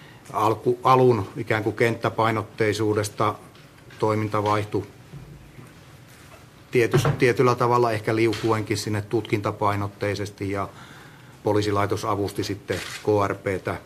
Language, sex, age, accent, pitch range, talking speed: Finnish, male, 30-49, native, 105-135 Hz, 75 wpm